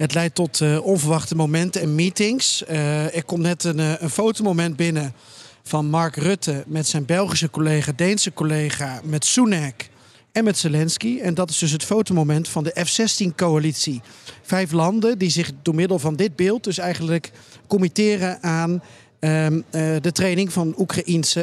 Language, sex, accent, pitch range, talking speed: Dutch, male, Dutch, 155-190 Hz, 160 wpm